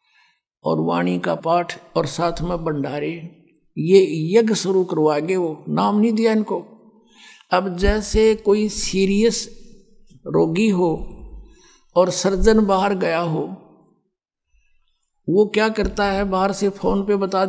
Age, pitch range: 60-79, 185-215 Hz